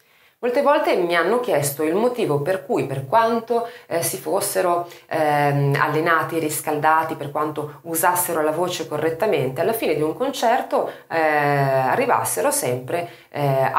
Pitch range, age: 135-185 Hz, 30-49